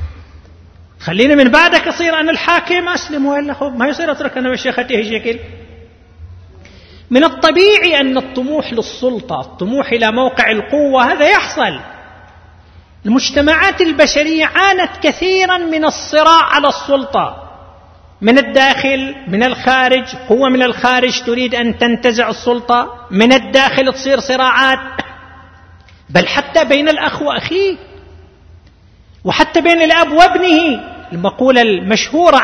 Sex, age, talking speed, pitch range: male, 40-59, 105 wpm, 195-300 Hz